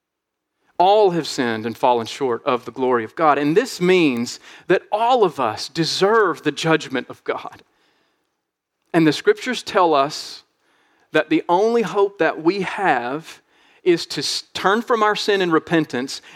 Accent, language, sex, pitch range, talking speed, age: American, English, male, 145-200 Hz, 160 wpm, 40-59